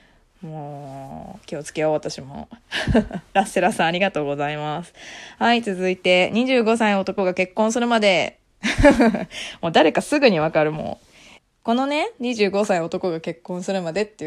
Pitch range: 170-245 Hz